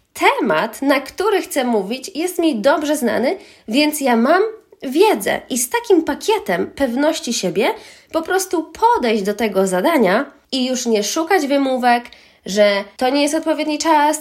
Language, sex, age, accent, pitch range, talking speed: Polish, female, 20-39, native, 235-320 Hz, 150 wpm